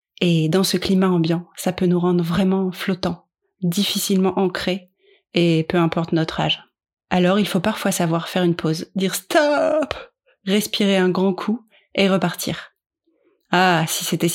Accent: French